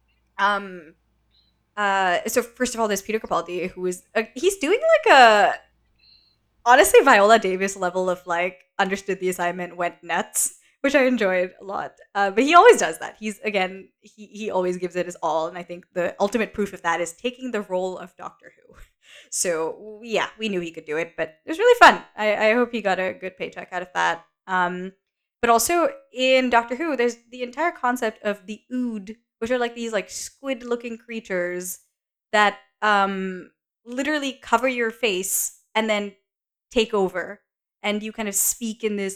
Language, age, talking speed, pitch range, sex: English, 10-29, 190 wpm, 175-225 Hz, female